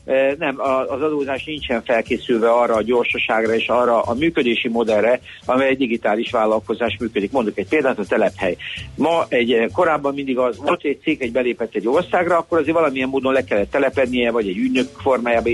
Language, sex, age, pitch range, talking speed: Hungarian, male, 60-79, 110-135 Hz, 165 wpm